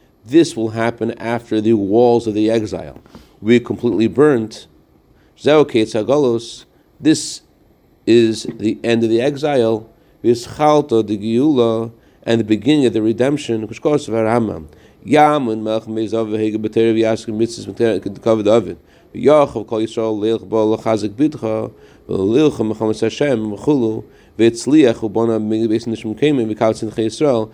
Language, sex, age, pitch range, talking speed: English, male, 40-59, 110-120 Hz, 55 wpm